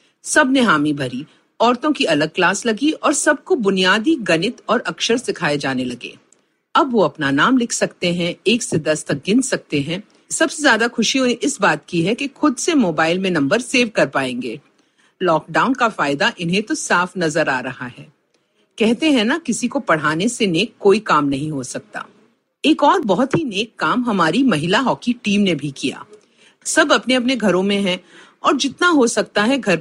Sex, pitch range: female, 170-275 Hz